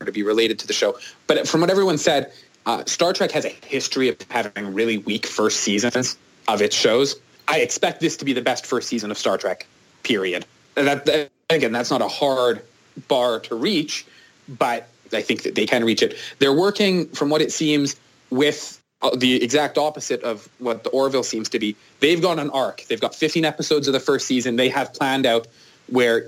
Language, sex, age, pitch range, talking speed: English, male, 20-39, 120-150 Hz, 205 wpm